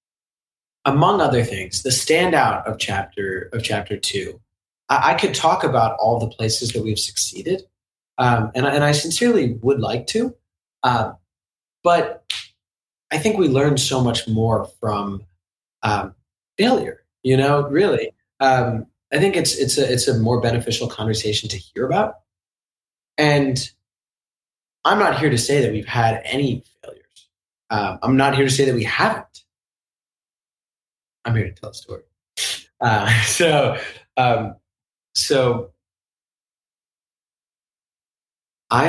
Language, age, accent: English, 20-39, American